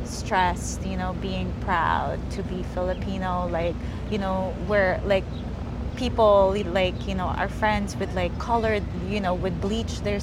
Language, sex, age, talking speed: English, female, 20-39, 160 wpm